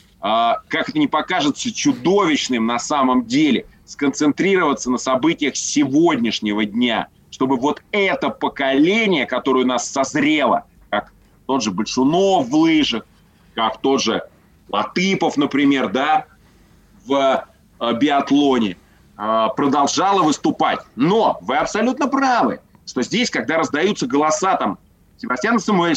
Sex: male